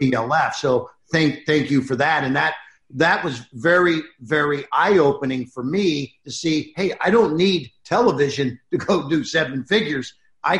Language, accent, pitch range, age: English, American, 140-170 Hz, 50-69